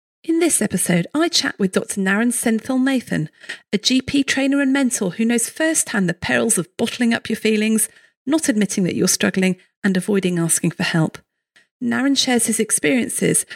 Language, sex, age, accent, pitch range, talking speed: English, female, 40-59, British, 190-260 Hz, 175 wpm